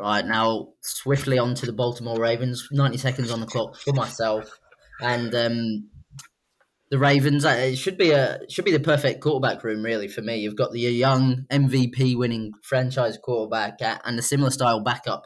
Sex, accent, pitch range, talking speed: male, British, 110-130 Hz, 175 wpm